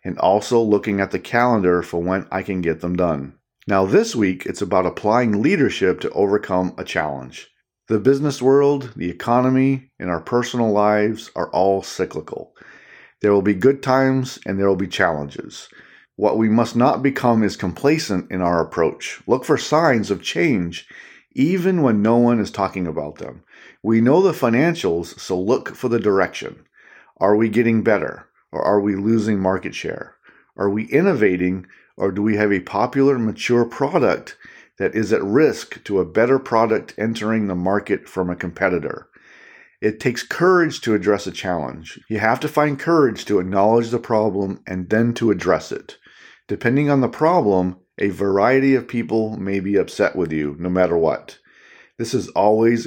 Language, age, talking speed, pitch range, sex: English, 40-59, 175 wpm, 95-120 Hz, male